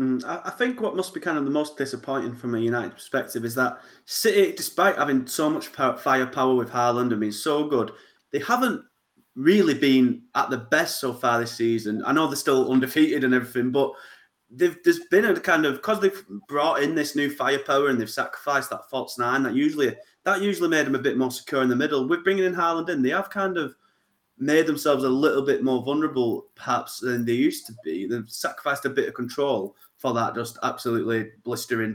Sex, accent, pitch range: male, British, 125-155 Hz